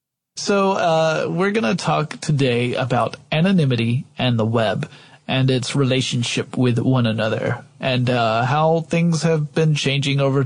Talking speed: 145 wpm